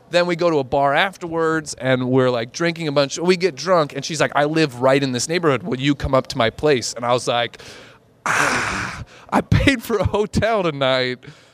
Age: 30-49